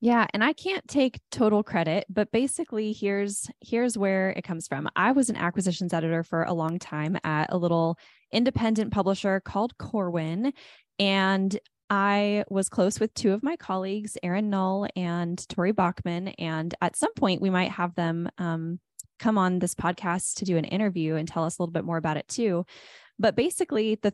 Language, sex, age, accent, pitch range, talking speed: English, female, 10-29, American, 175-220 Hz, 185 wpm